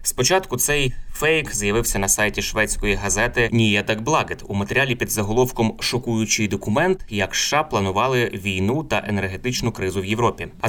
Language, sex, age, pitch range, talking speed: Ukrainian, male, 20-39, 100-120 Hz, 145 wpm